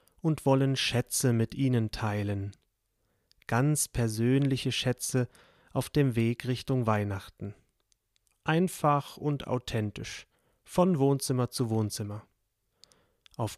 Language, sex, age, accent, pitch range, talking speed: German, male, 30-49, German, 115-145 Hz, 95 wpm